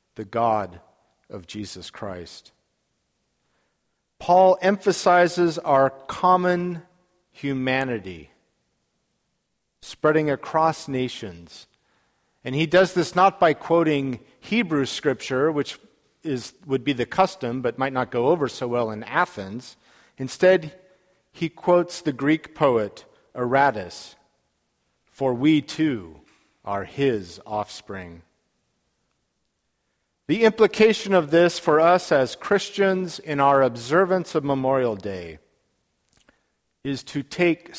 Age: 50-69